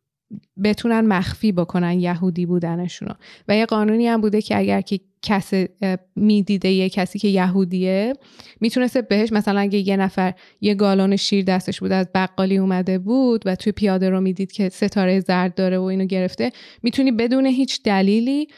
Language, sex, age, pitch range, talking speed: Persian, female, 20-39, 190-225 Hz, 160 wpm